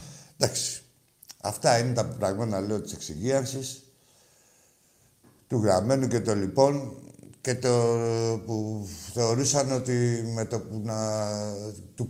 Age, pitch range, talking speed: 60-79, 105-135 Hz, 100 wpm